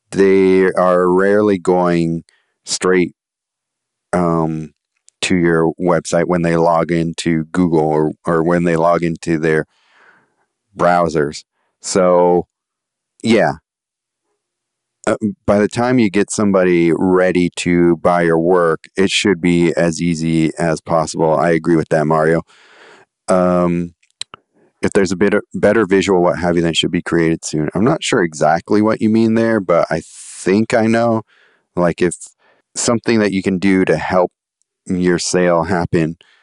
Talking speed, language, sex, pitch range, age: 145 wpm, English, male, 85-95 Hz, 30-49